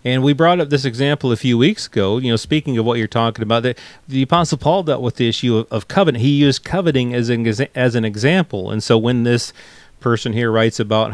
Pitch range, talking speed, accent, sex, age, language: 120-160 Hz, 245 wpm, American, male, 40-59, English